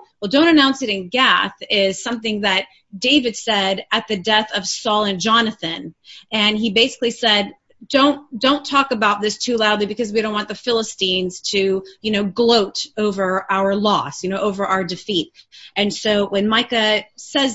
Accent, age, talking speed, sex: American, 30-49, 180 wpm, female